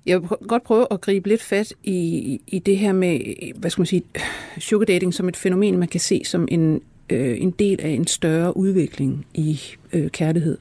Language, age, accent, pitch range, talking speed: Danish, 60-79, native, 160-195 Hz, 205 wpm